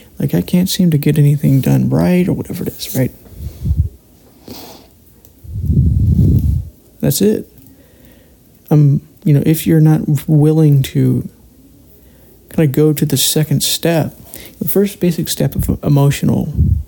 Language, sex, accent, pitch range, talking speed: English, male, American, 125-150 Hz, 130 wpm